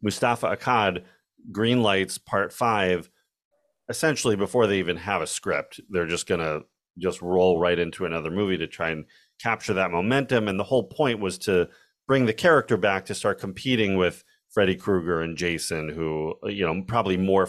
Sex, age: male, 40-59